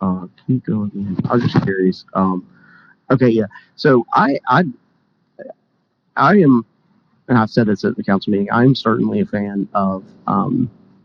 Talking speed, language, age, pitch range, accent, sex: 150 wpm, English, 40-59, 95-115 Hz, American, male